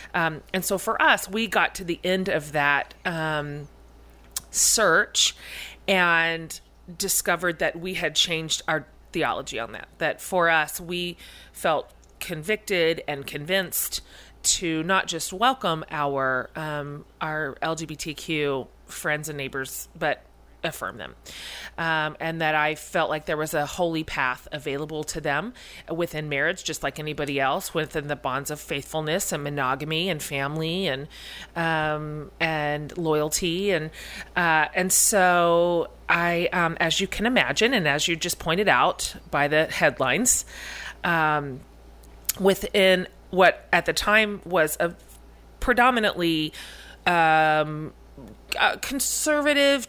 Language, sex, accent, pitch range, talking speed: English, female, American, 150-175 Hz, 130 wpm